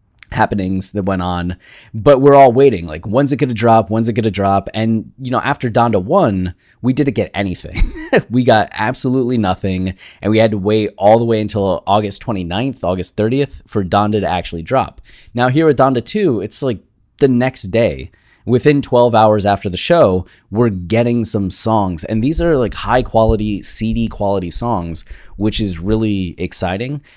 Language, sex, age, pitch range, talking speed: English, male, 20-39, 95-120 Hz, 180 wpm